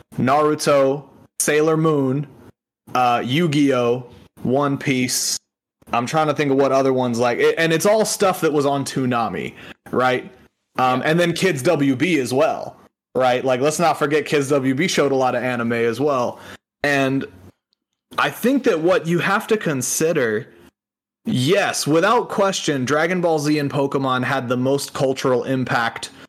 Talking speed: 155 wpm